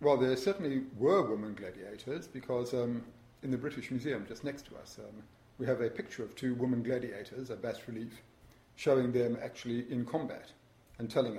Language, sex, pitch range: English, male, 120-135 Hz